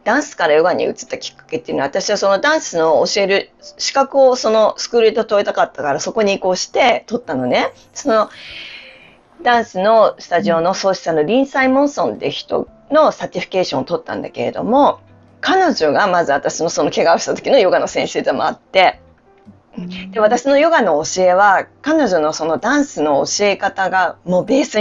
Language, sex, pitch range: Japanese, female, 170-255 Hz